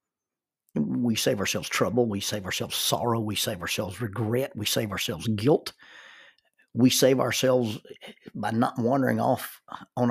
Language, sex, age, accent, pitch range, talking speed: English, male, 50-69, American, 100-120 Hz, 140 wpm